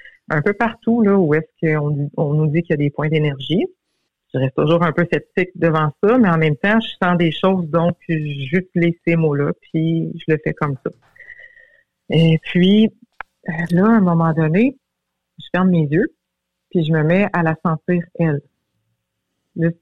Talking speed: 190 wpm